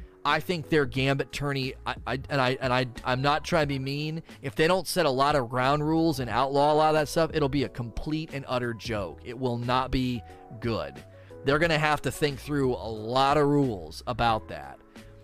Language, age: English, 30-49